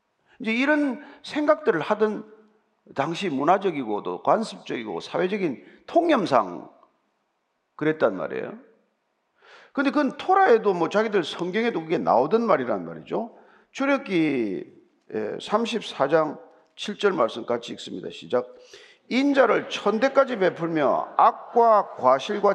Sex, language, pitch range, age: male, Korean, 180-275 Hz, 40-59